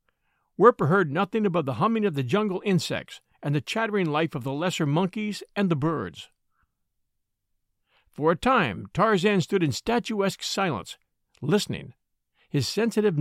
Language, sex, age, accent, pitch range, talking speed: English, male, 50-69, American, 145-210 Hz, 145 wpm